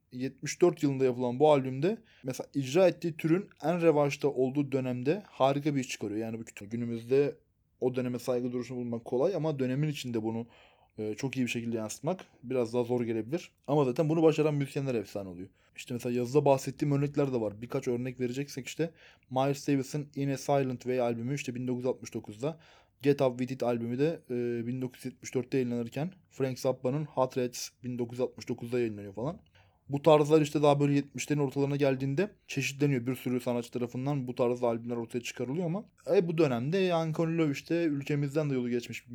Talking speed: 170 wpm